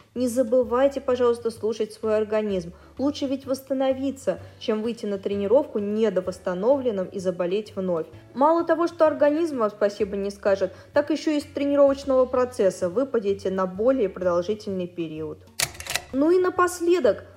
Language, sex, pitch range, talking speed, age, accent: Russian, female, 195-275 Hz, 135 wpm, 20-39, native